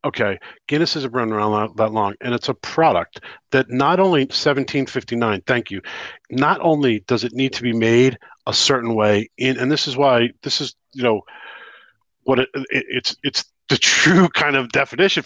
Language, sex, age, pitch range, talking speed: English, male, 40-59, 115-140 Hz, 185 wpm